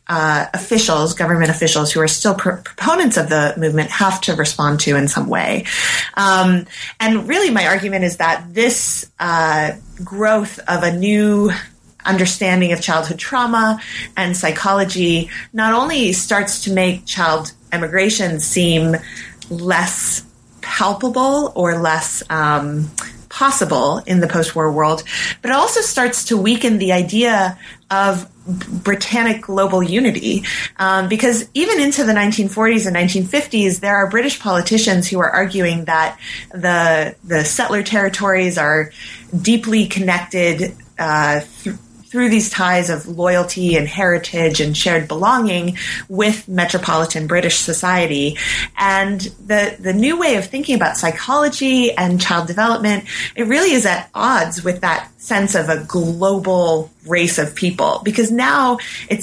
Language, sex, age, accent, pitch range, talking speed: English, female, 30-49, American, 170-210 Hz, 140 wpm